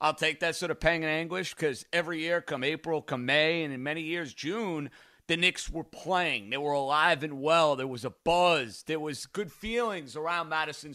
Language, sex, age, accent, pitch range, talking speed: English, male, 40-59, American, 155-200 Hz, 215 wpm